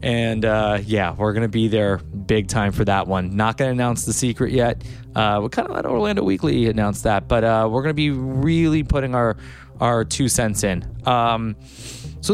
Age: 20-39